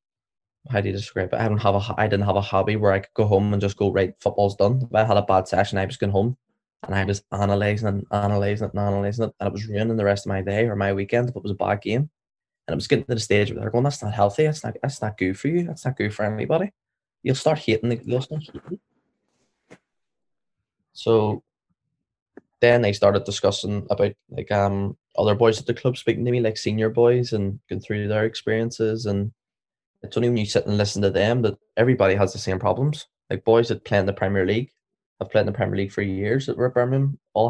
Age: 10-29